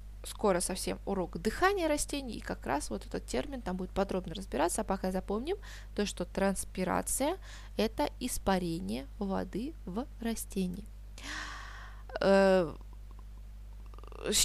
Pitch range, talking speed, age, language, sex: 180-245 Hz, 110 wpm, 20-39, Russian, female